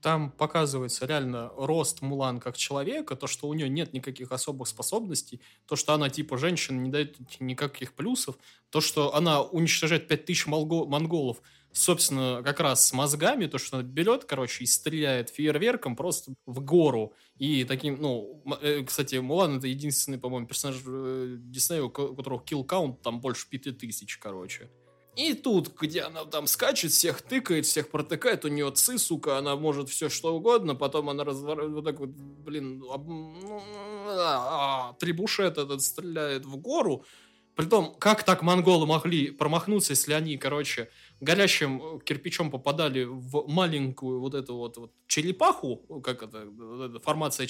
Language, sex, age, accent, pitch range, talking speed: Russian, male, 20-39, native, 130-160 Hz, 145 wpm